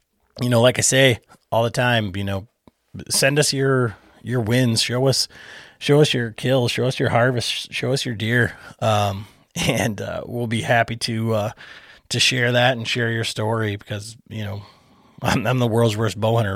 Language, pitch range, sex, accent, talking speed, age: English, 110-125 Hz, male, American, 190 wpm, 30-49